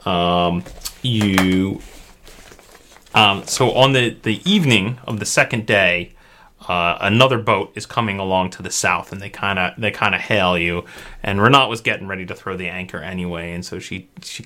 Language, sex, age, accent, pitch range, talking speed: English, male, 30-49, American, 95-120 Hz, 185 wpm